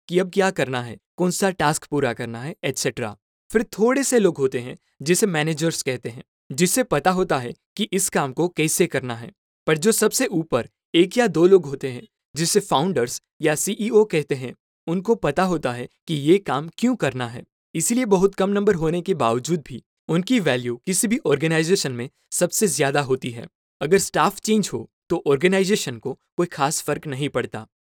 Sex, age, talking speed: male, 20-39, 190 wpm